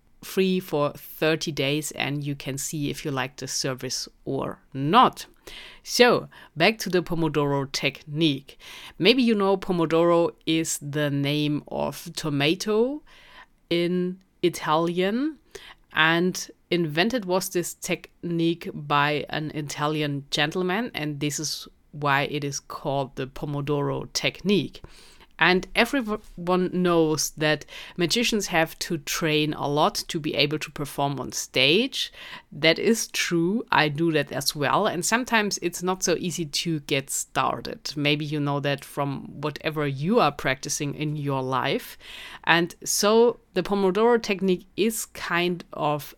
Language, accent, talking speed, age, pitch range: English, German, 135 wpm, 30-49, 150-185 Hz